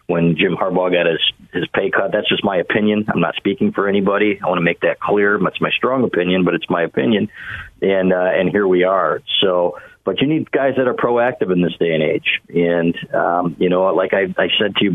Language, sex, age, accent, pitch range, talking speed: English, male, 50-69, American, 90-105 Hz, 240 wpm